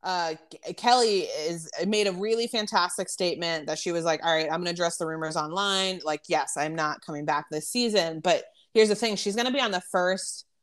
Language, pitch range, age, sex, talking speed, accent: English, 160-200 Hz, 20-39, female, 215 wpm, American